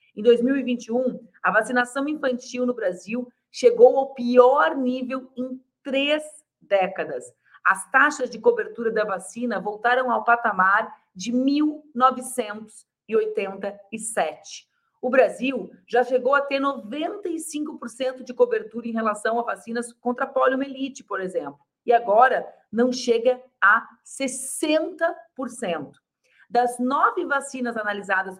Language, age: Portuguese, 40-59